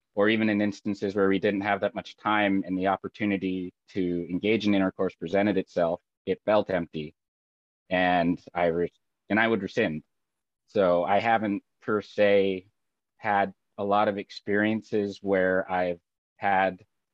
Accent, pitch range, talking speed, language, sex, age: American, 90-100 Hz, 150 wpm, English, male, 30-49